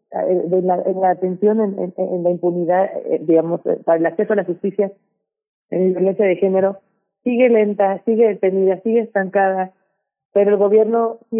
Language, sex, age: Spanish, female, 30-49